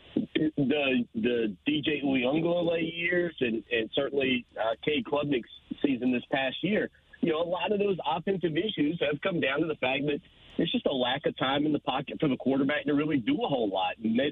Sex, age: male, 40-59